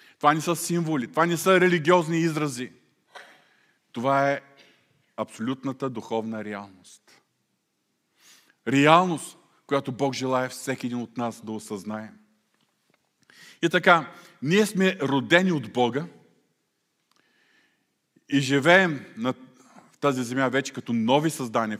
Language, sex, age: Bulgarian, male, 40-59